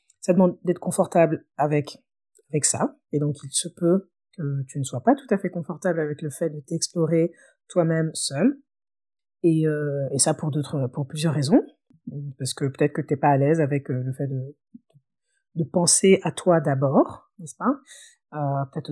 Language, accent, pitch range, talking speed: French, French, 145-190 Hz, 195 wpm